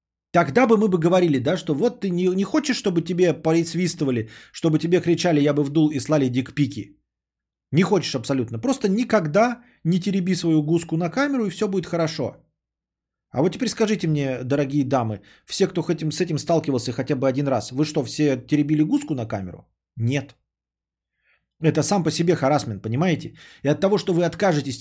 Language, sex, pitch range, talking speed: Bulgarian, male, 125-180 Hz, 180 wpm